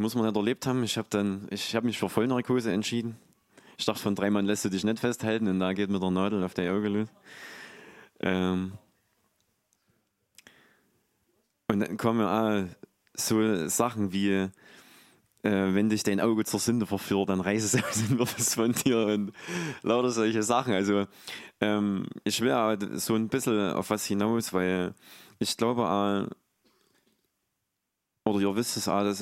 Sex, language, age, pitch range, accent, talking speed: male, German, 20-39, 95-110 Hz, German, 170 wpm